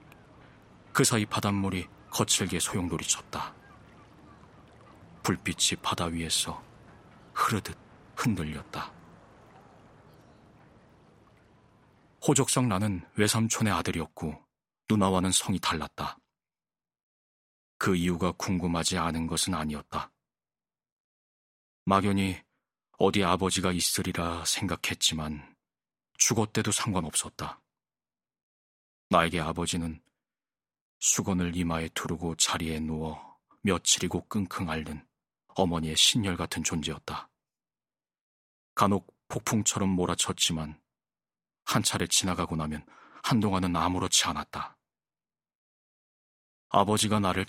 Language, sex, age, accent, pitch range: Korean, male, 40-59, native, 80-95 Hz